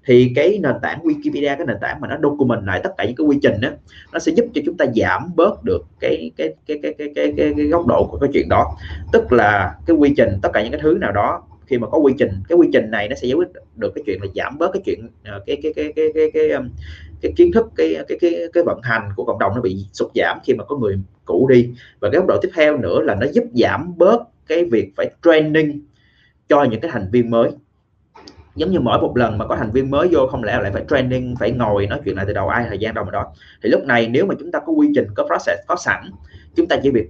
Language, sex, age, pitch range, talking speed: Vietnamese, male, 20-39, 110-145 Hz, 275 wpm